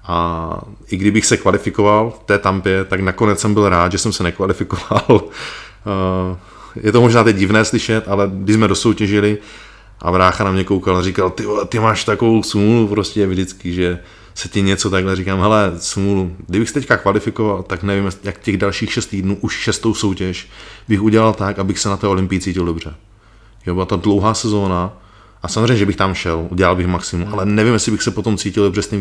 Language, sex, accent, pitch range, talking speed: Czech, male, native, 95-105 Hz, 200 wpm